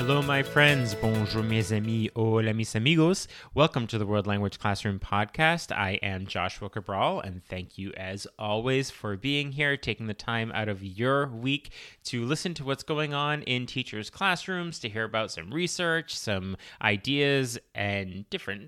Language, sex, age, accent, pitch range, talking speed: English, male, 30-49, American, 105-140 Hz, 170 wpm